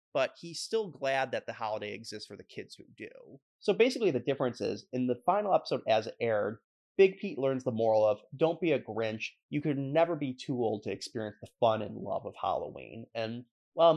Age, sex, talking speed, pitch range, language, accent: 30-49, male, 220 wpm, 110-160 Hz, English, American